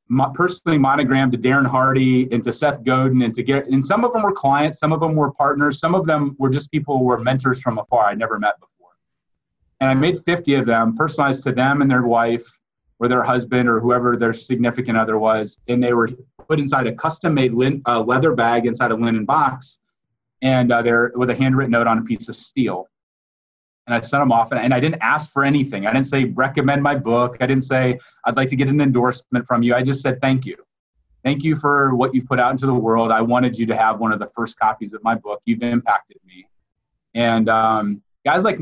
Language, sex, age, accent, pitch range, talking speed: English, male, 30-49, American, 120-140 Hz, 235 wpm